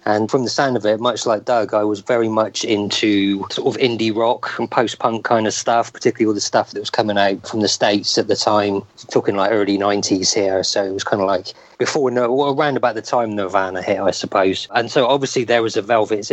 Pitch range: 105-130 Hz